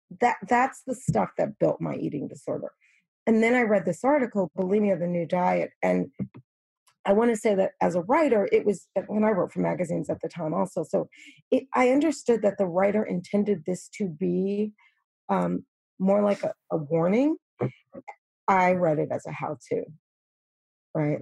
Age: 40-59